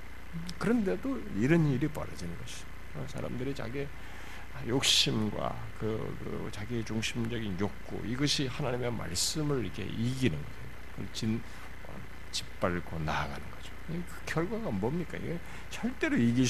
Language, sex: Korean, male